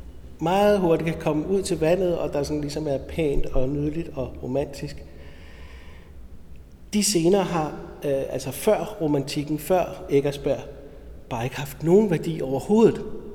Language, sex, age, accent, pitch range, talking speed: Danish, male, 60-79, native, 125-165 Hz, 145 wpm